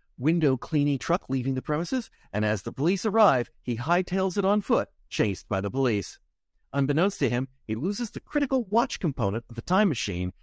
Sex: male